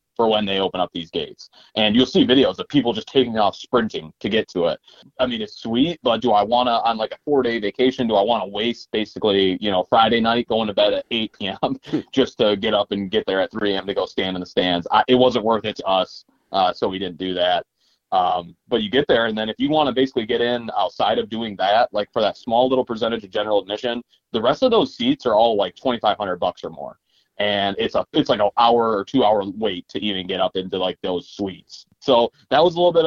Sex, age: male, 30-49